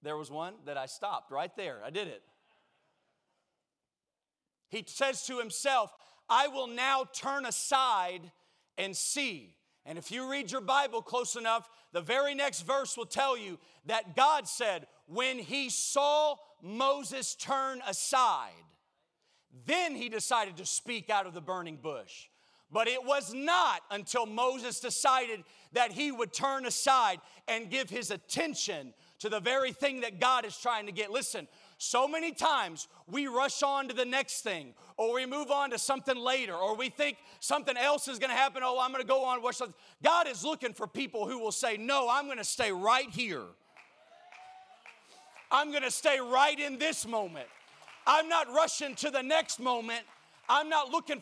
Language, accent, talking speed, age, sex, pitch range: English, American, 175 wpm, 40-59, male, 225-280 Hz